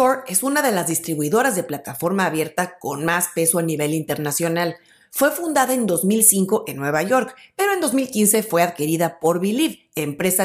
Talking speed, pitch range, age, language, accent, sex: 170 wpm, 160-220 Hz, 40-59, Spanish, Mexican, female